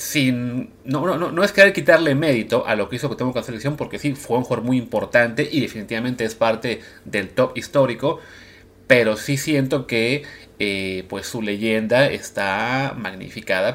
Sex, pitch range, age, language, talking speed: male, 105-145 Hz, 30-49, Spanish, 180 wpm